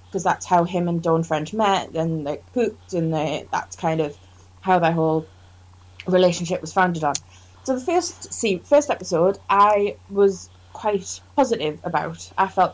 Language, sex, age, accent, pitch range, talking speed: English, female, 20-39, British, 155-210 Hz, 170 wpm